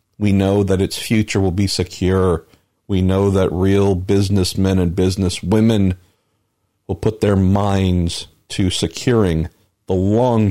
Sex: male